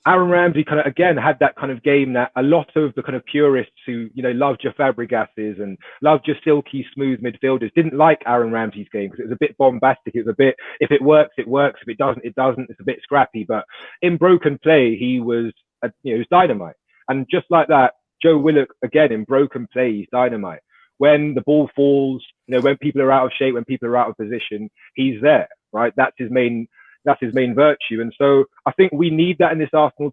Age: 30-49